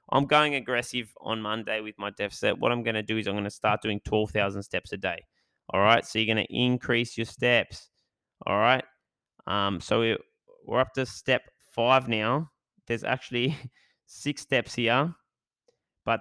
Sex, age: male, 10-29